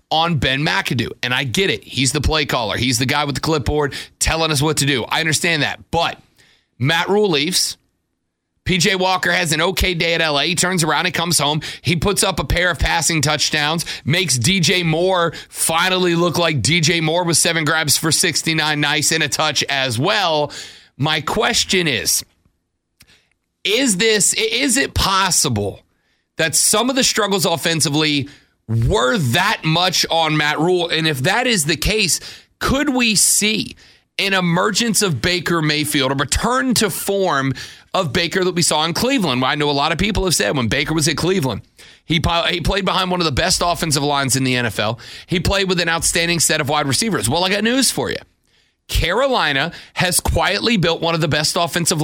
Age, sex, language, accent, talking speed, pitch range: 30-49, male, English, American, 190 wpm, 145-185 Hz